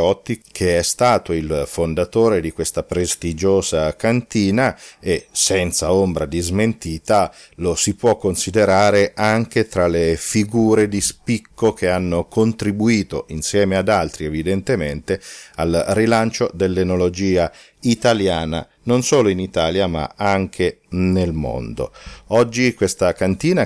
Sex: male